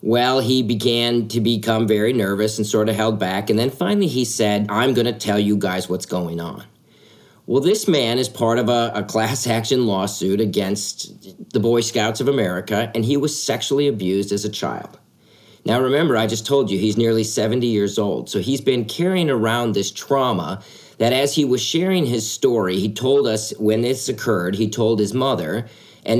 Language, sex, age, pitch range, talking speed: English, male, 50-69, 100-125 Hz, 200 wpm